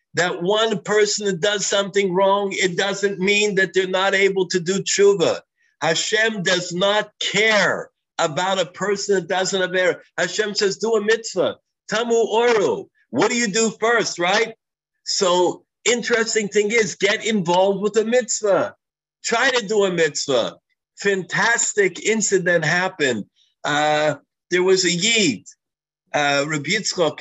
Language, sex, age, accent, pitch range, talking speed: English, male, 50-69, American, 155-210 Hz, 145 wpm